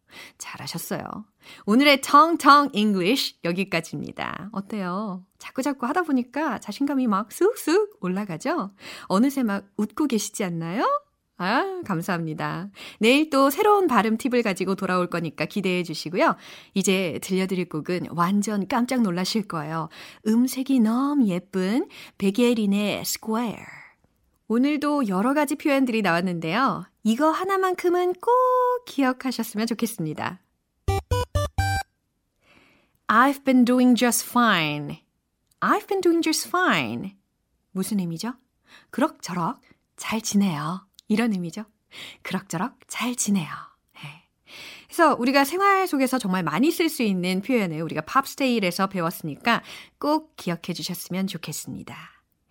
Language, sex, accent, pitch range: Korean, female, native, 185-275 Hz